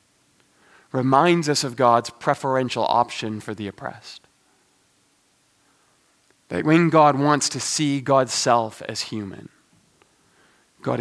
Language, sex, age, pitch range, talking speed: English, male, 30-49, 120-145 Hz, 110 wpm